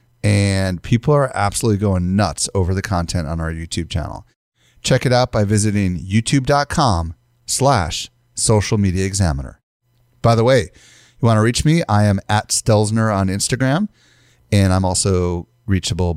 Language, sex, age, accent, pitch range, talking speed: English, male, 30-49, American, 100-135 Hz, 150 wpm